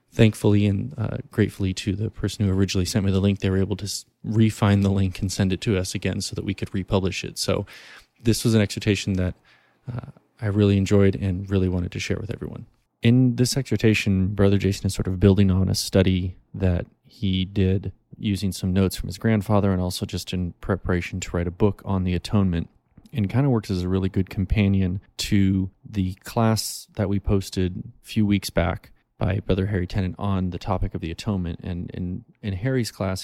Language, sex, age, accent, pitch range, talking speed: English, male, 20-39, American, 95-105 Hz, 210 wpm